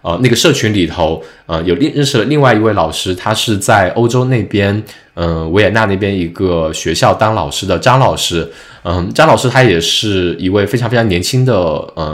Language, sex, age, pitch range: Chinese, male, 20-39, 90-135 Hz